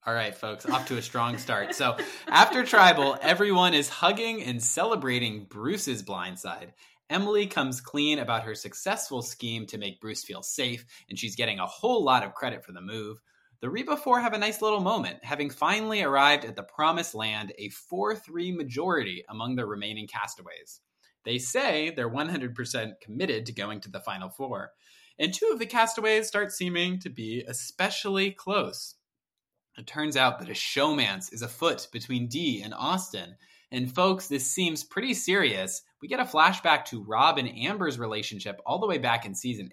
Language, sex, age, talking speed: English, male, 20-39, 180 wpm